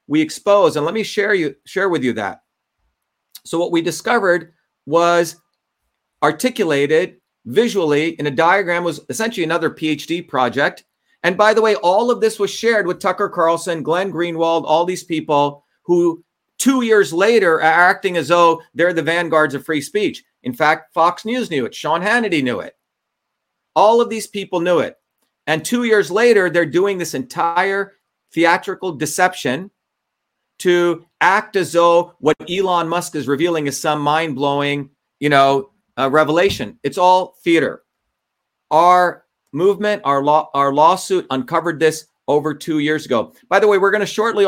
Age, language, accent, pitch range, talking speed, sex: 40-59, English, American, 155-195 Hz, 165 wpm, male